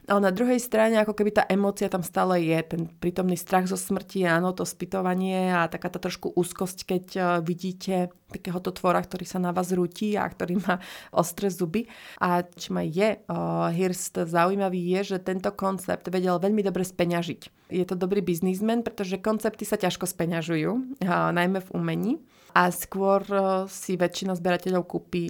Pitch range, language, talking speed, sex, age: 175-195 Hz, Slovak, 170 wpm, female, 30-49